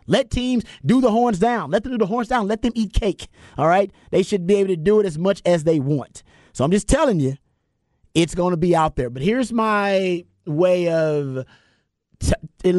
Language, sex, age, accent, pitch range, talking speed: English, male, 30-49, American, 135-180 Hz, 220 wpm